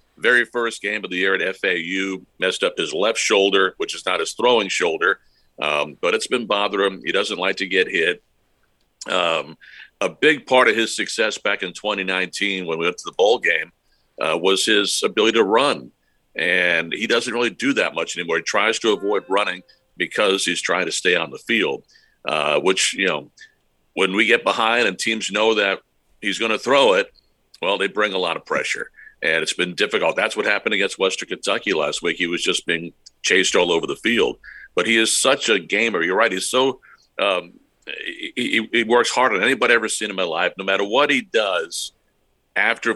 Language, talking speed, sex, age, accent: English, 210 wpm, male, 50-69, American